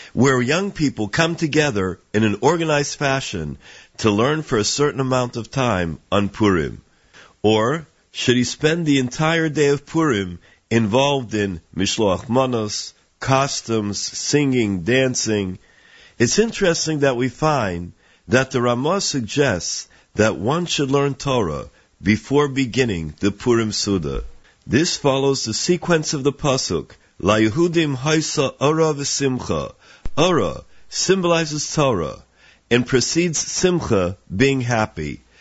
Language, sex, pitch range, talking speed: English, male, 100-145 Hz, 120 wpm